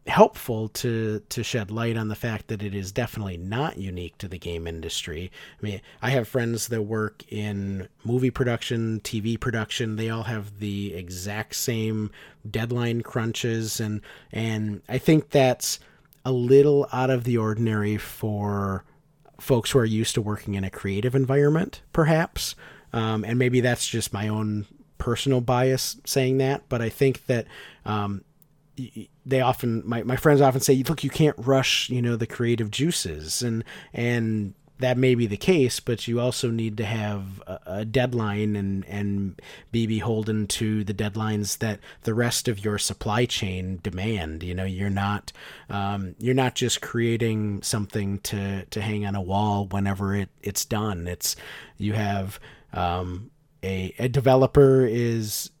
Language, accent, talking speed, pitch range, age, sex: English, American, 165 wpm, 100-125 Hz, 40-59, male